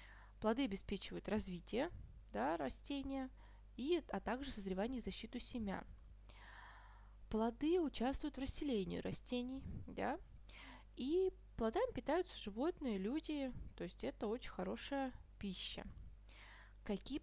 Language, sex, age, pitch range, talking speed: Russian, female, 20-39, 185-255 Hz, 95 wpm